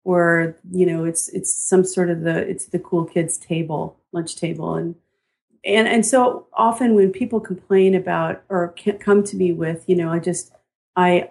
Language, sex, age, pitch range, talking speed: English, female, 40-59, 170-195 Hz, 185 wpm